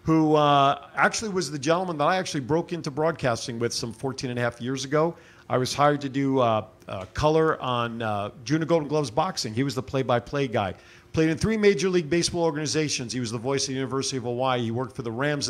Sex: male